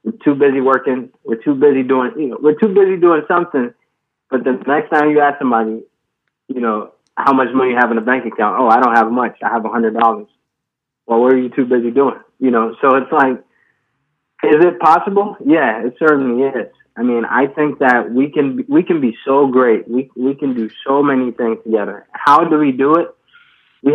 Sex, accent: male, American